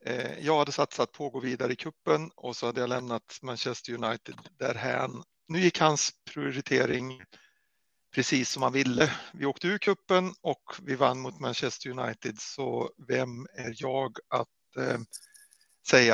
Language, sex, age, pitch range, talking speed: Swedish, male, 60-79, 125-160 Hz, 155 wpm